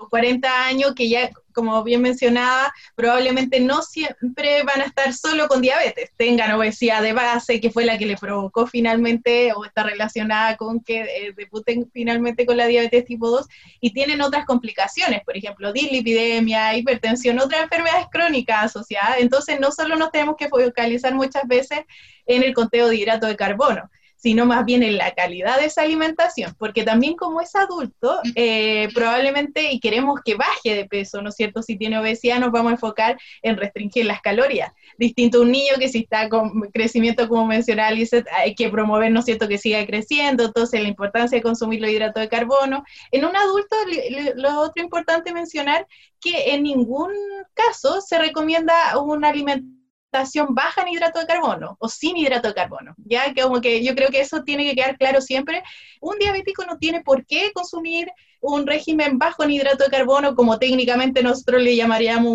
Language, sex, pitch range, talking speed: Romanian, female, 230-290 Hz, 185 wpm